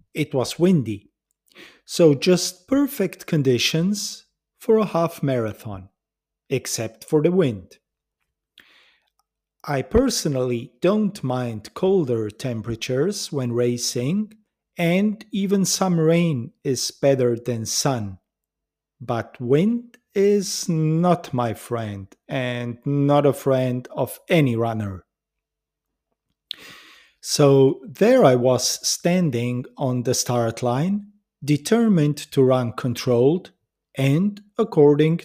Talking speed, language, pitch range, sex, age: 100 wpm, English, 120-185 Hz, male, 40-59